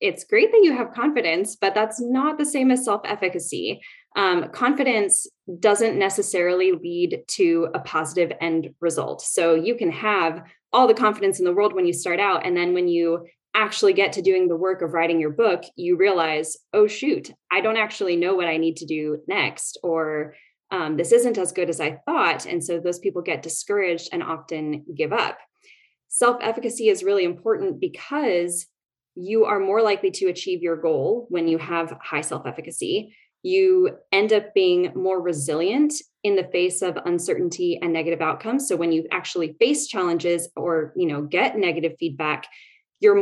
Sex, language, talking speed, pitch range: female, English, 180 wpm, 170-240 Hz